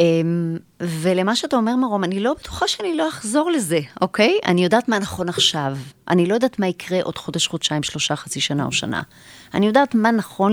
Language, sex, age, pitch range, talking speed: Hebrew, female, 30-49, 150-225 Hz, 200 wpm